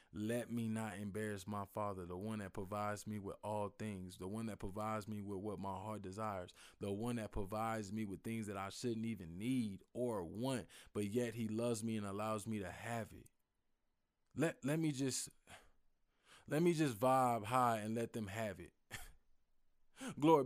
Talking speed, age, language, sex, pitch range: 190 wpm, 20-39, English, male, 105-130 Hz